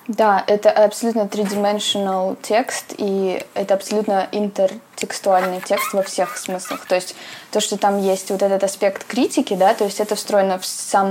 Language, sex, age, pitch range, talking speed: Russian, female, 20-39, 190-205 Hz, 160 wpm